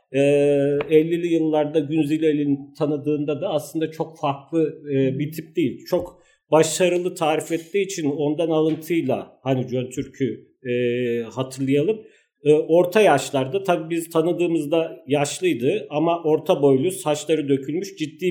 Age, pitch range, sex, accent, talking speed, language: 50-69, 140-165 Hz, male, native, 110 wpm, Turkish